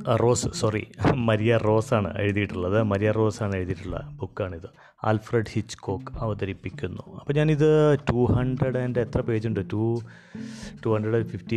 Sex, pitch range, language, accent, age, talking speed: male, 105-125 Hz, Malayalam, native, 30-49, 130 wpm